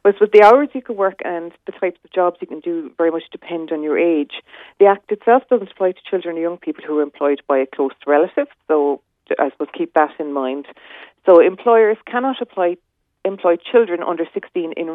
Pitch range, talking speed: 150-200 Hz, 215 wpm